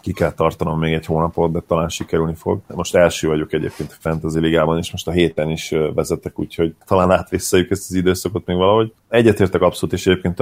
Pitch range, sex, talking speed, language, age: 80-90 Hz, male, 200 wpm, Hungarian, 30-49